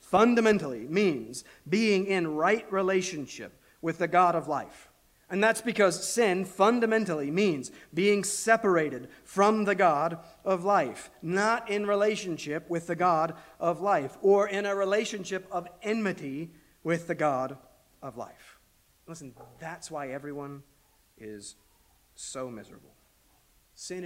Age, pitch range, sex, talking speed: 40-59, 135-190 Hz, male, 125 wpm